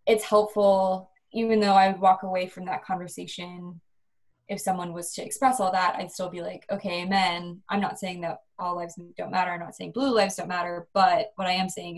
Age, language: 20-39, English